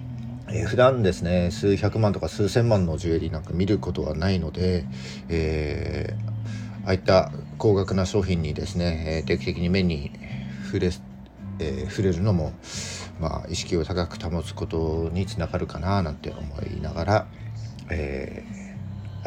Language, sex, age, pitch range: Japanese, male, 50-69, 80-105 Hz